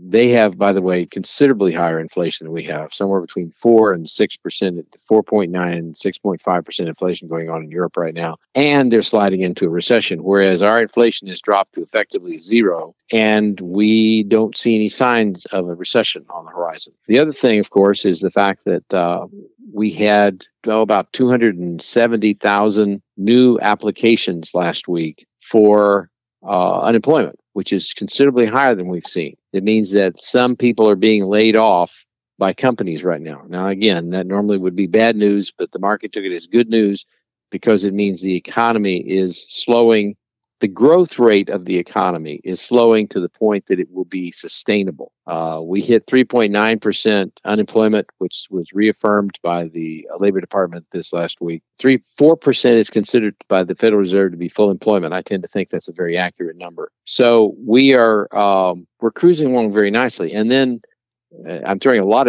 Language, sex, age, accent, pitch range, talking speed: English, male, 50-69, American, 95-115 Hz, 185 wpm